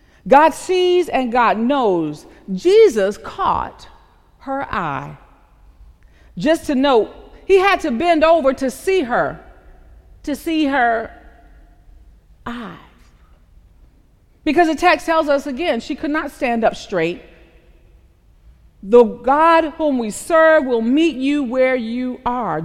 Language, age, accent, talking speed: English, 40-59, American, 125 wpm